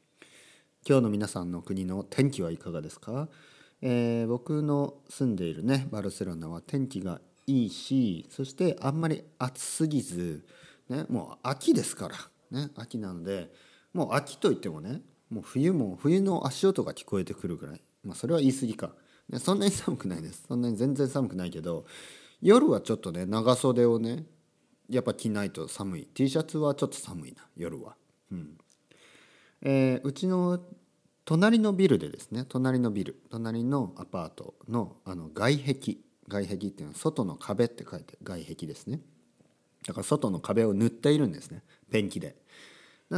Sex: male